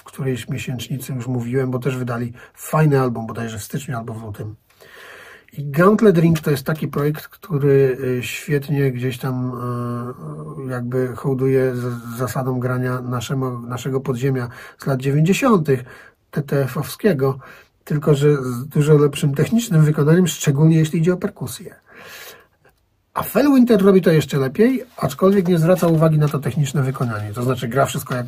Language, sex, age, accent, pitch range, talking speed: Polish, male, 40-59, native, 120-150 Hz, 150 wpm